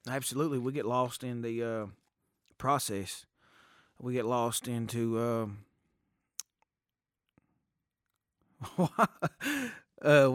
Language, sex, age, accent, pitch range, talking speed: English, male, 20-39, American, 100-125 Hz, 80 wpm